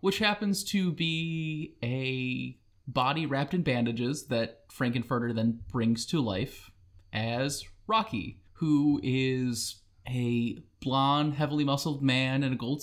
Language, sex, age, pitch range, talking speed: English, male, 20-39, 120-160 Hz, 125 wpm